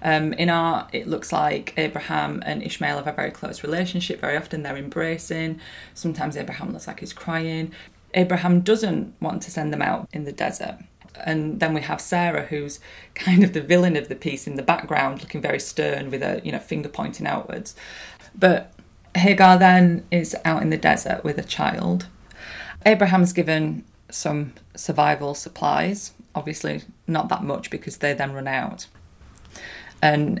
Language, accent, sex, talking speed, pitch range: English, British, female, 170 wpm, 150-180 Hz